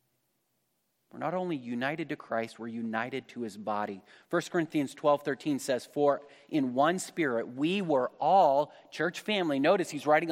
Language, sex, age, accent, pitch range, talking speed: English, male, 30-49, American, 140-185 Hz, 165 wpm